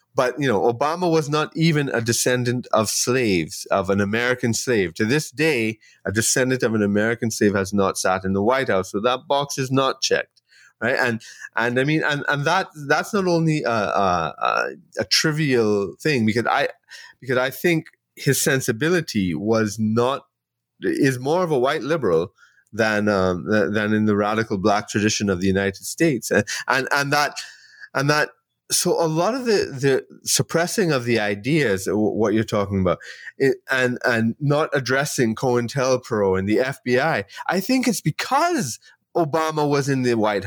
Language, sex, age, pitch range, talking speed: English, male, 30-49, 110-160 Hz, 175 wpm